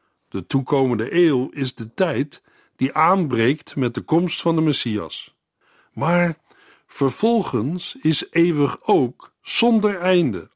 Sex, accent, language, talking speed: male, Dutch, Dutch, 120 wpm